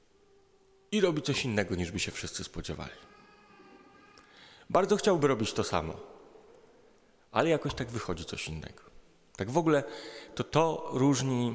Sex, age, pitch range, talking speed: male, 30-49, 95-140 Hz, 135 wpm